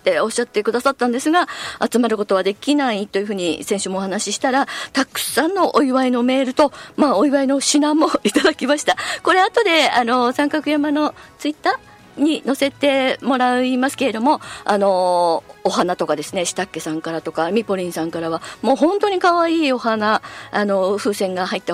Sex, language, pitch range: female, Japanese, 205-300 Hz